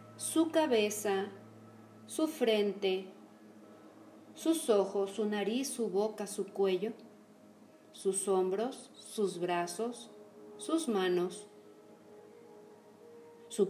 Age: 40-59